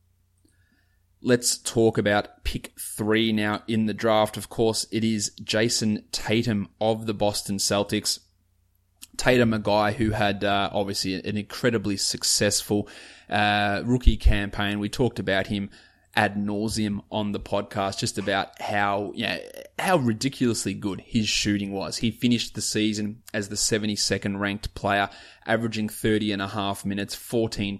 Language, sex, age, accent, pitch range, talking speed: English, male, 20-39, Australian, 100-115 Hz, 145 wpm